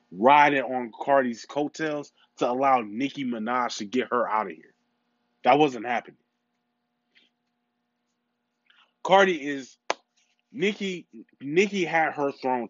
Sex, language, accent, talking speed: male, English, American, 110 wpm